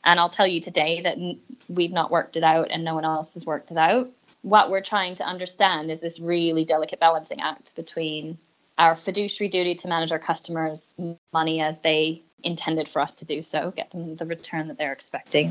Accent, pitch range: American, 160-190 Hz